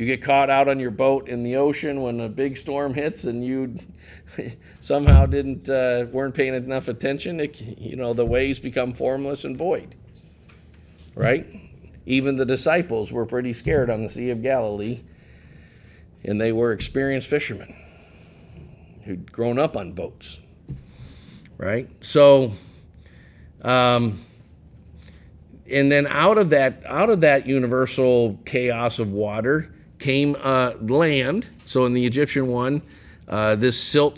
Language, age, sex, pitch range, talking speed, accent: English, 50-69, male, 110-140 Hz, 140 wpm, American